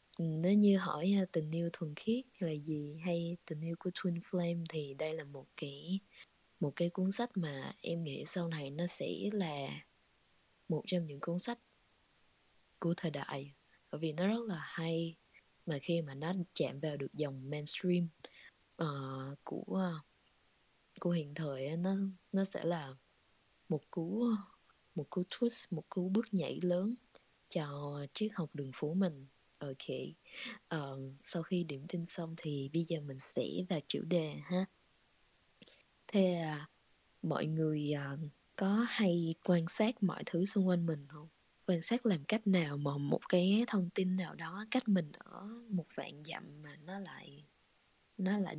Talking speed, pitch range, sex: 165 wpm, 150-190 Hz, female